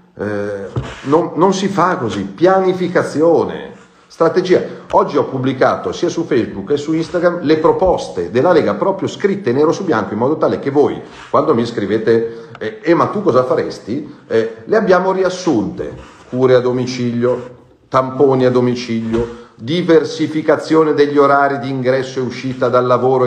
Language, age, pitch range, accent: Italian, 40-59, 115-145 Hz, native